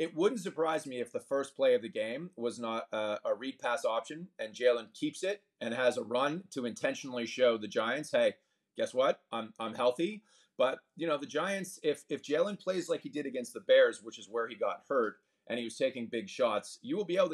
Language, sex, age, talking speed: English, male, 30-49, 230 wpm